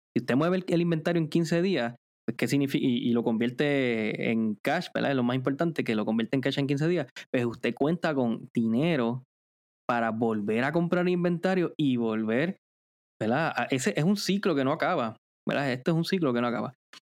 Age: 20-39